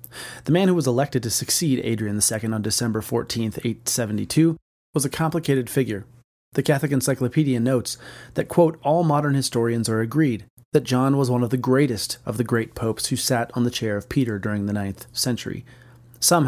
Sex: male